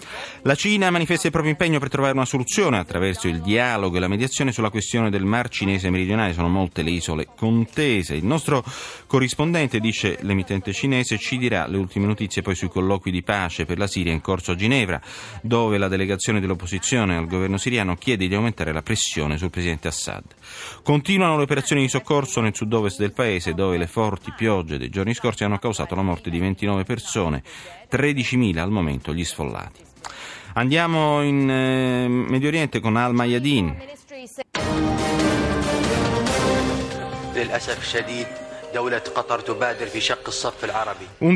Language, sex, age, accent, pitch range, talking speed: Italian, male, 30-49, native, 95-130 Hz, 145 wpm